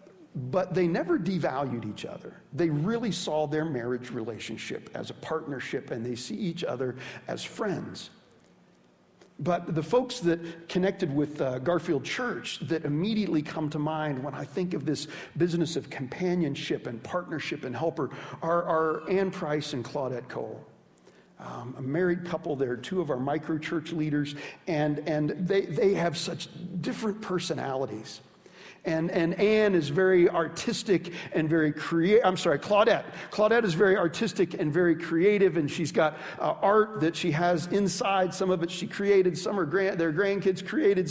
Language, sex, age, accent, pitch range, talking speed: English, male, 50-69, American, 155-195 Hz, 165 wpm